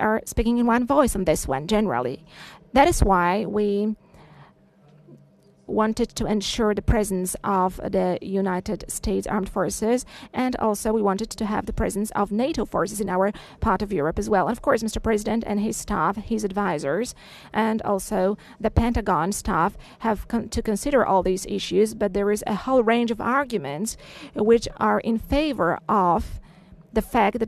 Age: 40-59